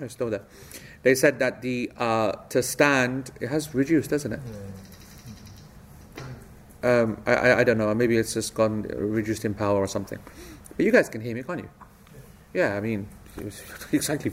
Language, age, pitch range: English, 30-49, 120-150 Hz